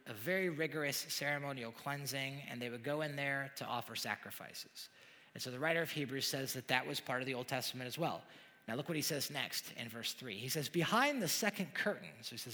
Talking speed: 235 wpm